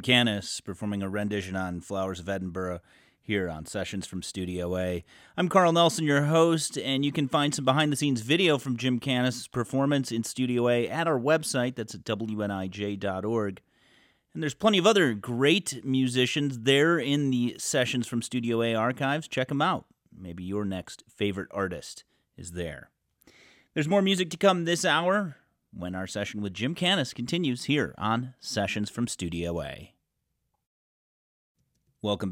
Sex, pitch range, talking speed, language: male, 100-140 Hz, 160 wpm, English